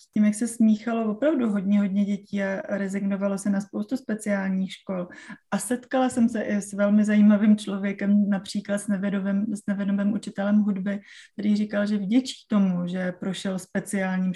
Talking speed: 160 wpm